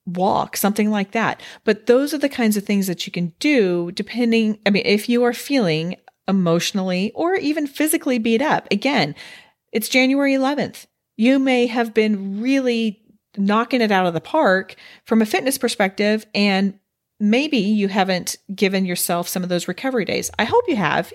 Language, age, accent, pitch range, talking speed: English, 40-59, American, 185-260 Hz, 175 wpm